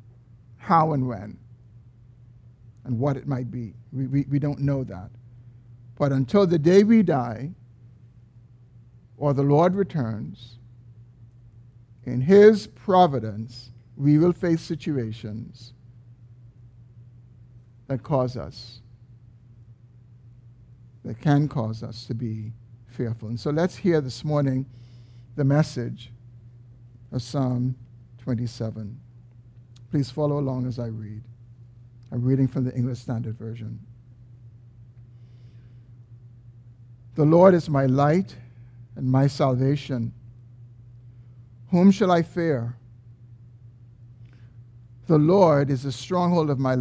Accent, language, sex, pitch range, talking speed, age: American, English, male, 120-140 Hz, 110 wpm, 50-69